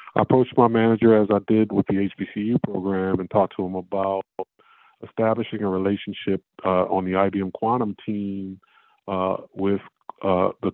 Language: English